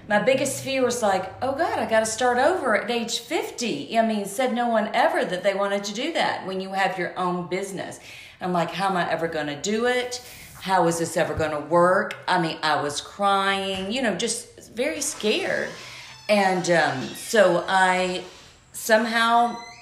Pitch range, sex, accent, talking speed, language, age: 165-220 Hz, female, American, 195 wpm, English, 40-59